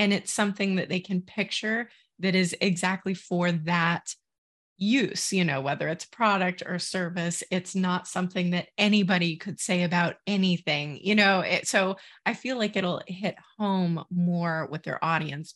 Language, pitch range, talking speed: English, 175-210 Hz, 160 wpm